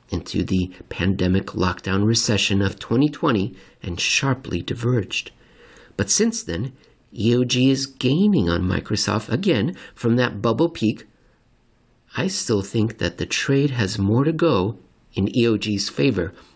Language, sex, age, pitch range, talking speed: English, male, 50-69, 105-135 Hz, 130 wpm